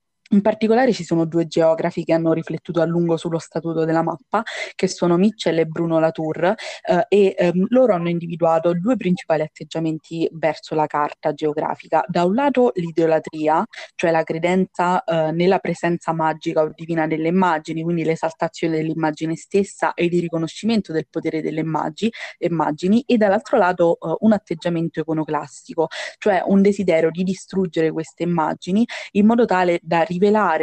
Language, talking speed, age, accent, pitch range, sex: Italian, 155 wpm, 20-39, native, 160-185 Hz, female